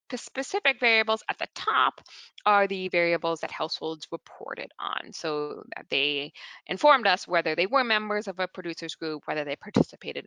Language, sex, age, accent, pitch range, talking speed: English, female, 20-39, American, 175-240 Hz, 170 wpm